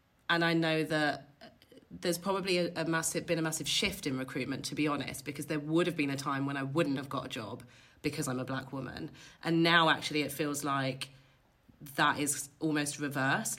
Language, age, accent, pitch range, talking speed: English, 30-49, British, 140-165 Hz, 210 wpm